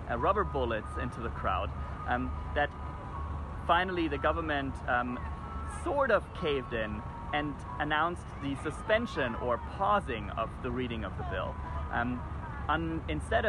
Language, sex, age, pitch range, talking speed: English, male, 30-49, 70-110 Hz, 140 wpm